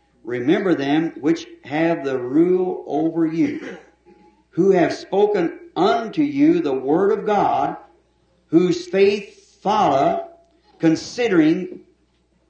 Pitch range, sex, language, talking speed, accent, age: 110-185 Hz, male, English, 100 wpm, American, 60-79